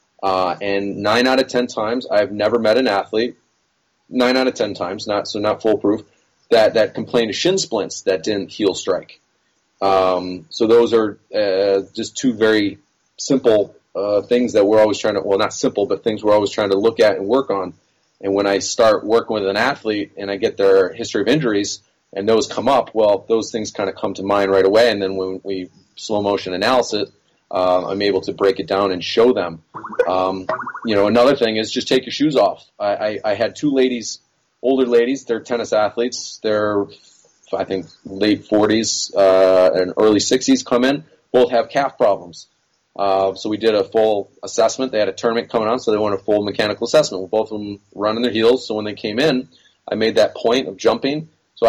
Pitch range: 100-125 Hz